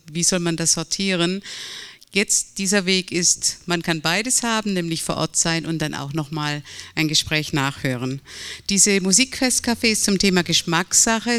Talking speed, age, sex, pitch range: 160 wpm, 50-69, female, 165-195 Hz